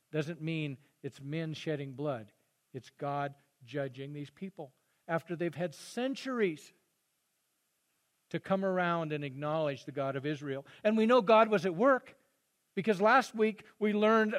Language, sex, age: English, male, 50-69